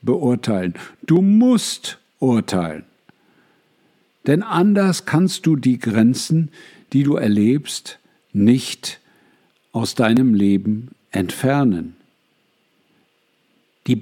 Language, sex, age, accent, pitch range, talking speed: German, male, 60-79, German, 115-160 Hz, 80 wpm